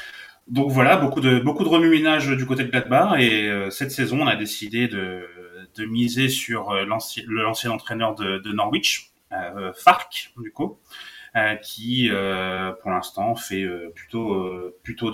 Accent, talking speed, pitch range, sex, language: French, 170 wpm, 100-130 Hz, male, French